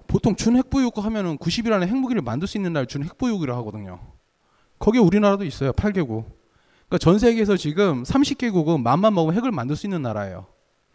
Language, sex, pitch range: Korean, male, 135-210 Hz